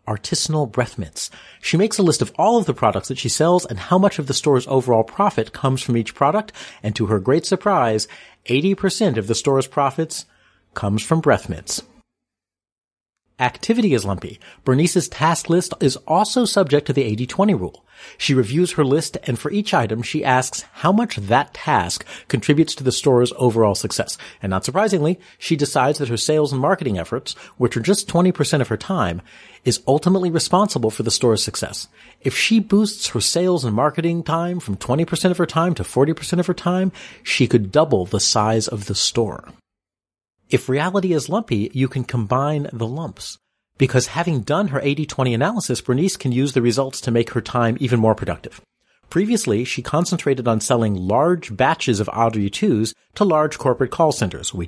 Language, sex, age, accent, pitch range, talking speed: English, male, 40-59, American, 110-170 Hz, 185 wpm